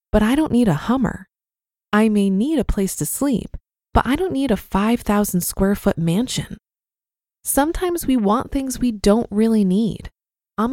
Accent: American